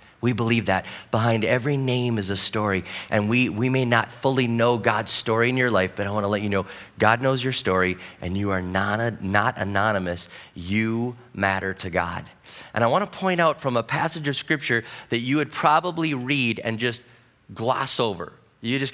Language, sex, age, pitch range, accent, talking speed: English, male, 30-49, 120-155 Hz, American, 205 wpm